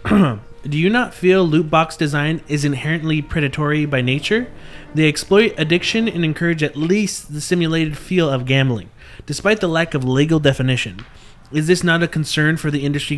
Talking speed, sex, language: 175 wpm, male, English